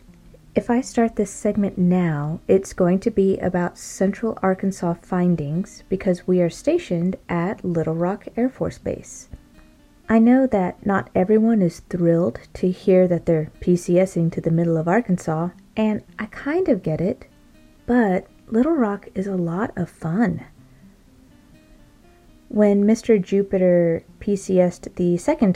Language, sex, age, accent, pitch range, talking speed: English, female, 30-49, American, 170-220 Hz, 145 wpm